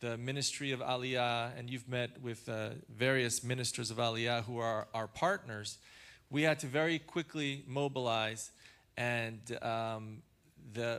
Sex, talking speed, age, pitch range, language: male, 140 wpm, 40-59, 120-145 Hz, English